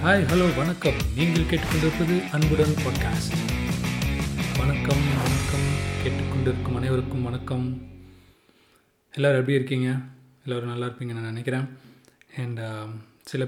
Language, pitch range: Tamil, 115-130 Hz